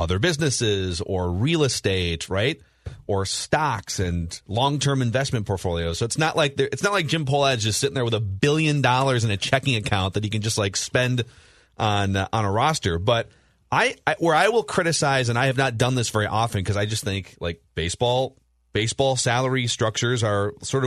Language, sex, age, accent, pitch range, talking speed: English, male, 30-49, American, 100-145 Hz, 200 wpm